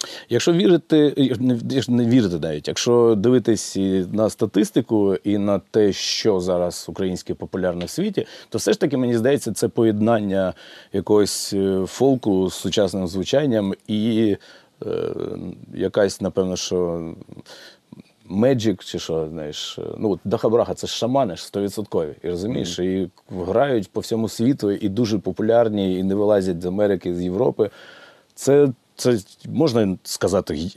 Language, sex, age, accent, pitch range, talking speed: Ukrainian, male, 30-49, native, 90-120 Hz, 130 wpm